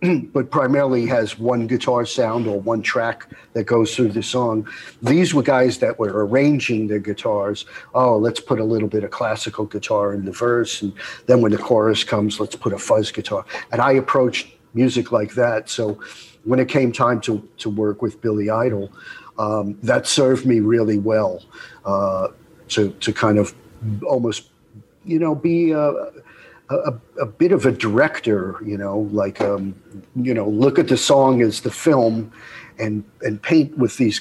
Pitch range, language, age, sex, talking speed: 105-125 Hz, English, 50-69, male, 180 wpm